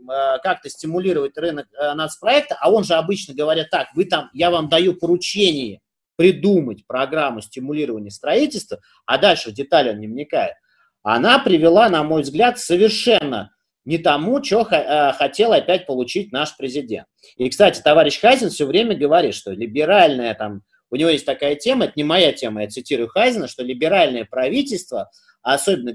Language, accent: Russian, native